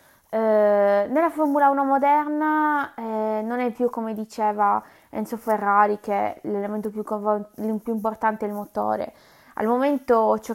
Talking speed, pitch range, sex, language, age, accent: 135 wpm, 210-245 Hz, female, English, 20-39, Italian